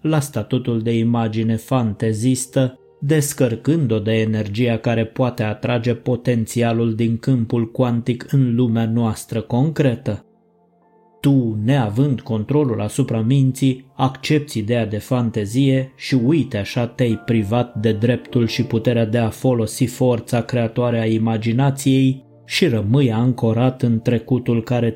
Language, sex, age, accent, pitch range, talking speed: Romanian, male, 20-39, native, 115-130 Hz, 120 wpm